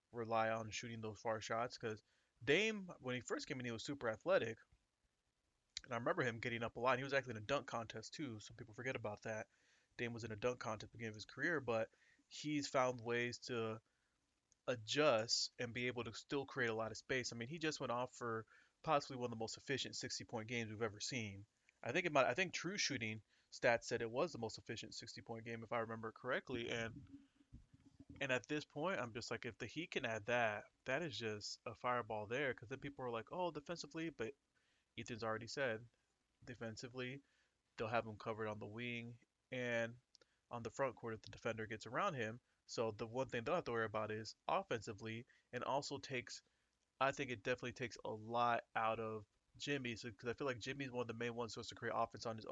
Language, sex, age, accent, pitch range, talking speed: English, male, 20-39, American, 110-125 Hz, 225 wpm